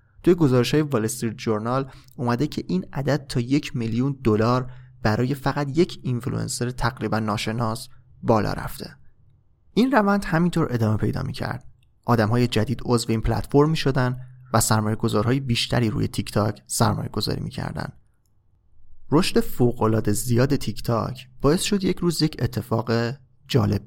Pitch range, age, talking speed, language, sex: 110-140 Hz, 30-49, 130 wpm, Persian, male